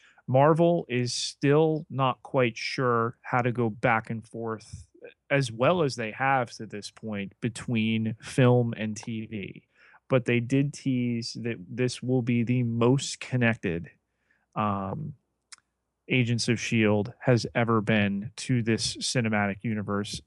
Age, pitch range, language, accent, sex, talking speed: 30-49, 110-125 Hz, English, American, male, 135 wpm